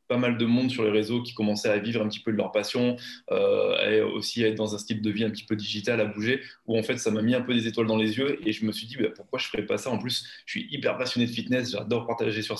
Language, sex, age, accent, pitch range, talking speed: English, male, 20-39, French, 110-125 Hz, 325 wpm